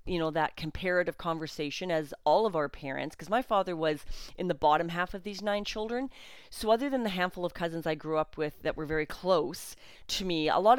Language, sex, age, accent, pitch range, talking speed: English, female, 40-59, American, 150-205 Hz, 230 wpm